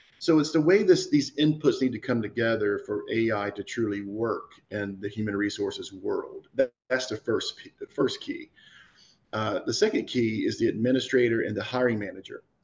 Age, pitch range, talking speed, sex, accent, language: 40-59, 105-155 Hz, 185 wpm, male, American, English